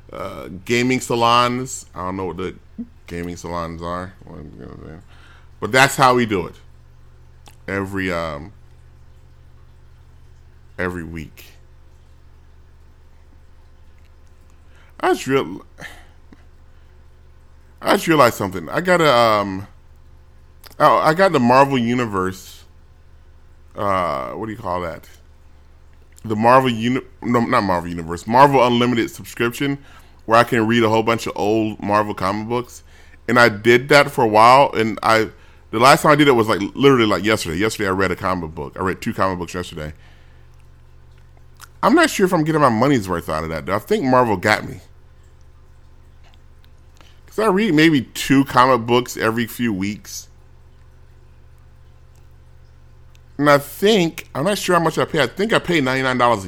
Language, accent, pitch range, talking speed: English, American, 75-120 Hz, 150 wpm